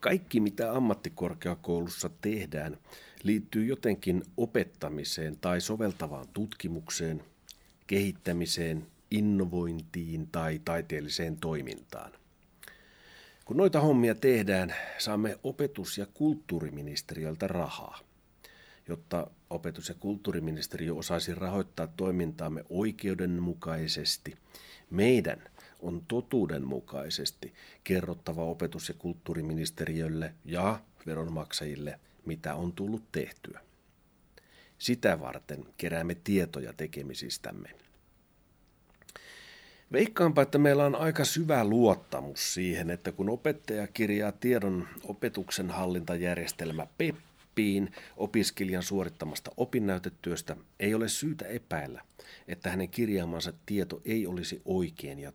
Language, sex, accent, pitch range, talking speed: Finnish, male, native, 85-105 Hz, 90 wpm